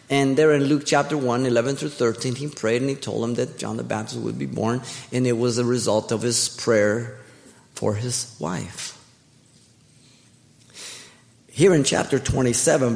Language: English